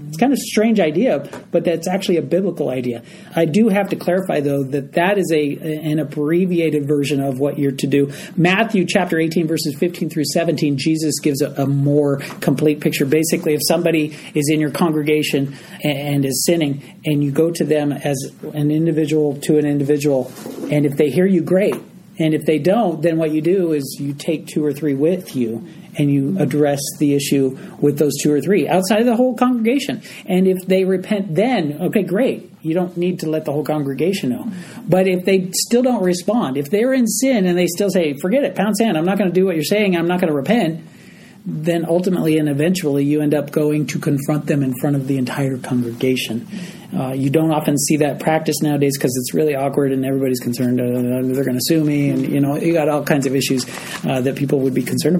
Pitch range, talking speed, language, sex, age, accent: 140-180 Hz, 220 wpm, English, male, 40-59, American